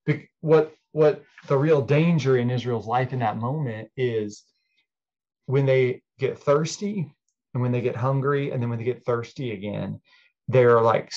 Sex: male